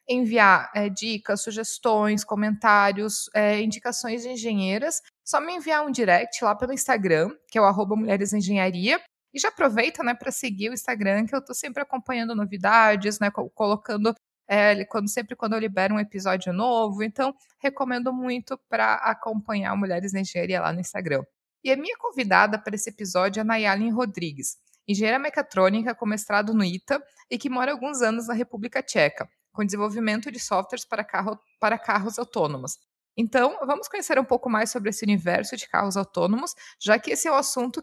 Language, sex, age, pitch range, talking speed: Portuguese, female, 20-39, 205-250 Hz, 175 wpm